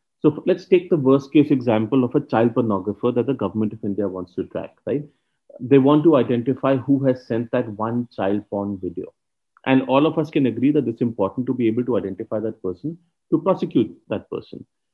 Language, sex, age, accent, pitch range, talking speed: English, male, 40-59, Indian, 110-150 Hz, 210 wpm